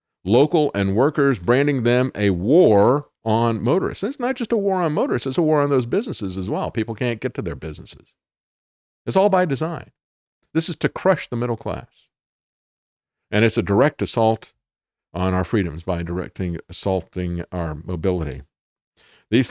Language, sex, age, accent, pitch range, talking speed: English, male, 50-69, American, 110-160 Hz, 170 wpm